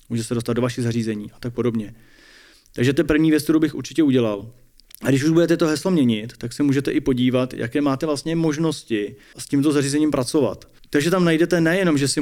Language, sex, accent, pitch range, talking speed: Czech, male, native, 115-140 Hz, 210 wpm